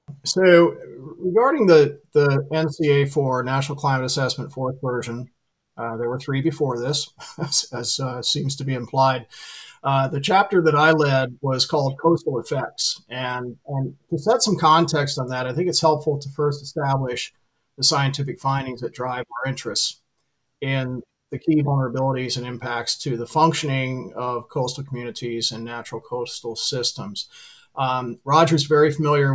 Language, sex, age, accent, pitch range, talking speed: English, male, 40-59, American, 125-150 Hz, 155 wpm